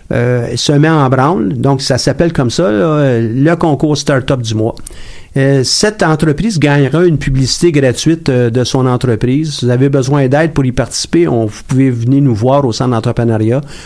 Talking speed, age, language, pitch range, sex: 190 wpm, 50-69, French, 120-145 Hz, male